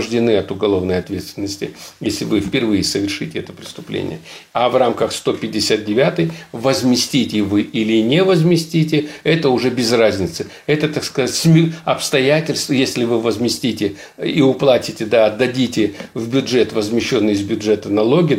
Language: Russian